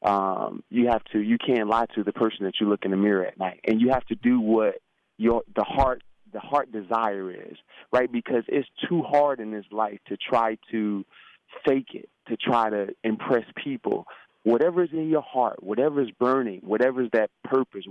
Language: English